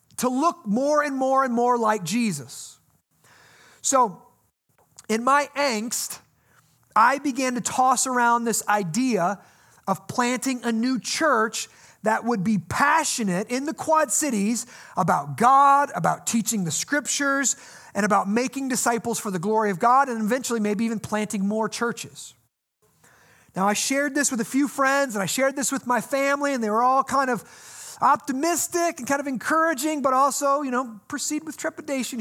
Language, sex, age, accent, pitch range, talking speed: English, male, 30-49, American, 210-265 Hz, 165 wpm